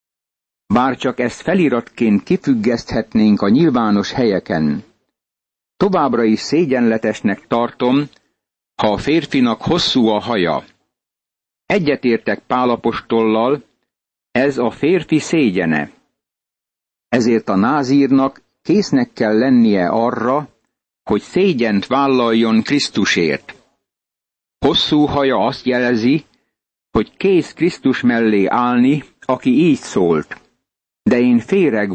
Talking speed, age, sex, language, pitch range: 95 wpm, 60-79, male, Hungarian, 115-140 Hz